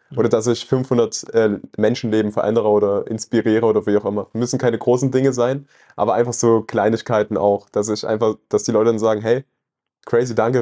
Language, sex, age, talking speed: German, male, 20-39, 190 wpm